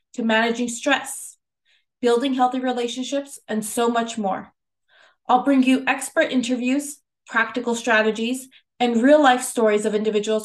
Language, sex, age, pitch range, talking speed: English, female, 20-39, 215-260 Hz, 130 wpm